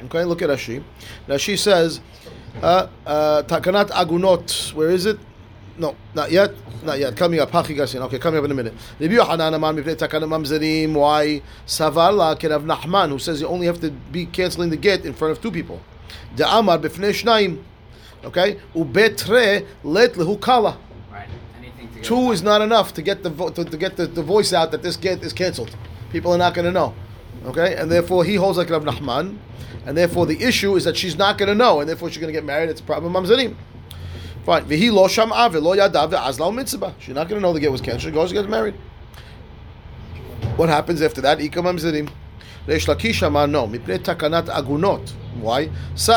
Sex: male